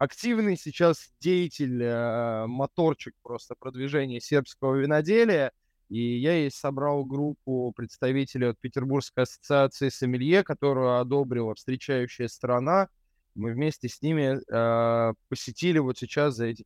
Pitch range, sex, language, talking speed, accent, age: 130-165 Hz, male, Russian, 110 wpm, native, 20-39